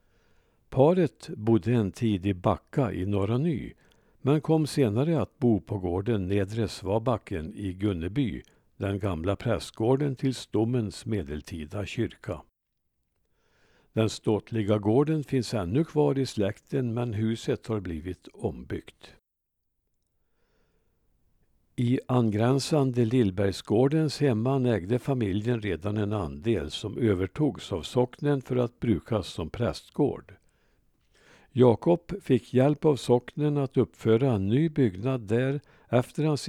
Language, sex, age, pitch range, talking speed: Swedish, male, 60-79, 100-130 Hz, 115 wpm